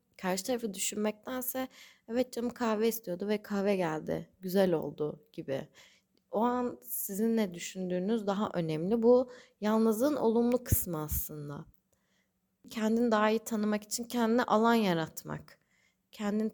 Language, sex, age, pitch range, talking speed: Turkish, female, 30-49, 185-235 Hz, 125 wpm